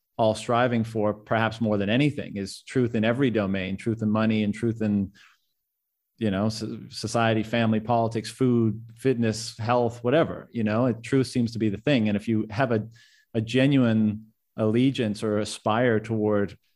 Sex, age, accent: male, 30-49, American